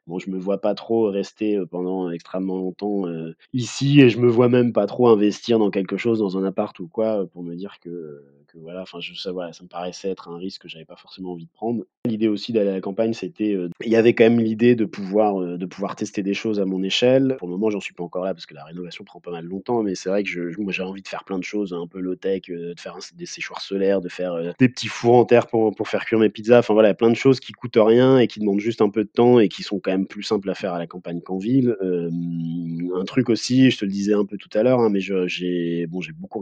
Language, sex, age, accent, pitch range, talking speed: French, male, 20-39, French, 90-110 Hz, 290 wpm